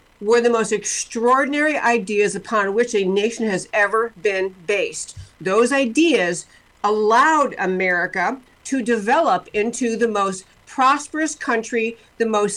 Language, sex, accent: English, female, American